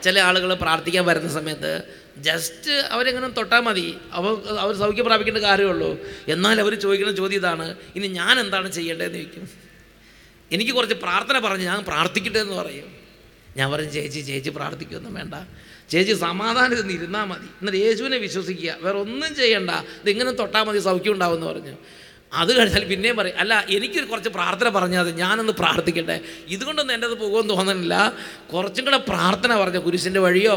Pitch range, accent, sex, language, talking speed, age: 170-210 Hz, Indian, male, English, 145 wpm, 30-49